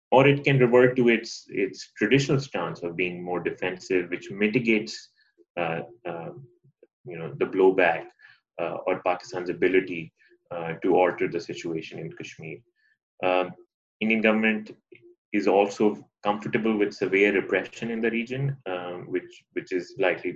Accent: Indian